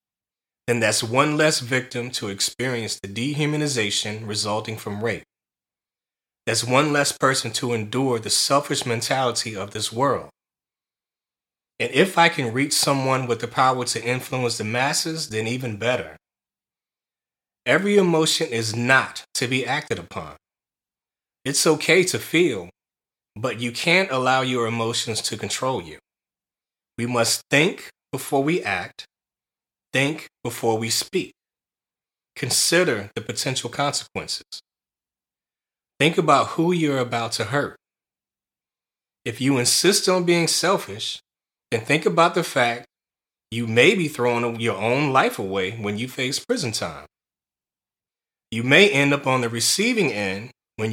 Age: 30-49